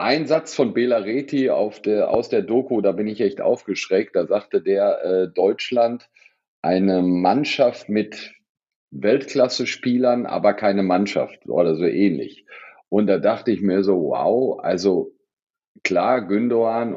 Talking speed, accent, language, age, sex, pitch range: 135 wpm, German, German, 50-69, male, 100-135 Hz